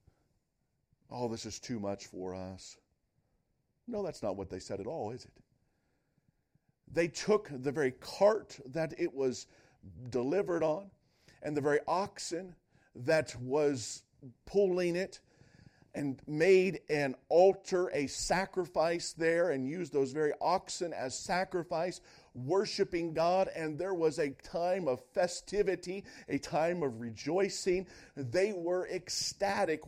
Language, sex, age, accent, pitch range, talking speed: English, male, 50-69, American, 130-175 Hz, 130 wpm